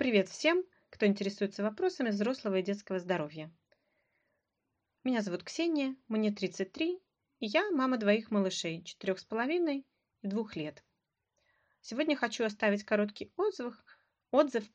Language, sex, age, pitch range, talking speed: Russian, female, 30-49, 195-240 Hz, 120 wpm